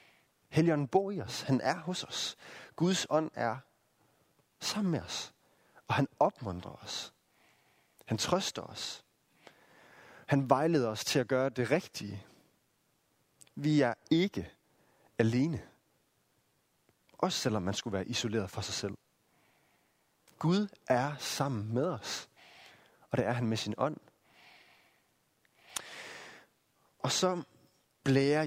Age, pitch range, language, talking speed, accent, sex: 30-49, 115-155 Hz, Danish, 120 wpm, native, male